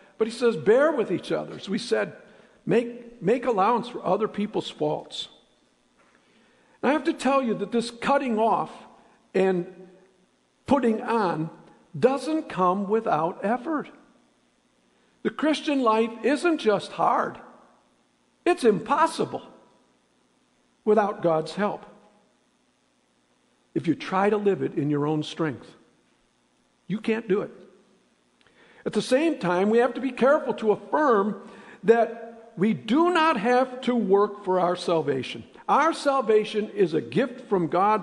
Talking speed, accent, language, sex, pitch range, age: 135 wpm, American, English, male, 190-250 Hz, 50-69